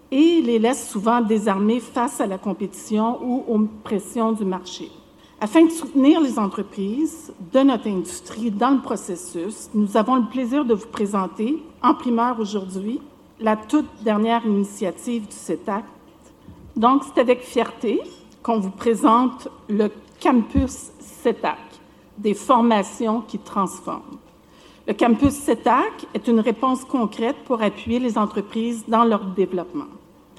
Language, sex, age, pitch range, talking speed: French, female, 50-69, 215-275 Hz, 135 wpm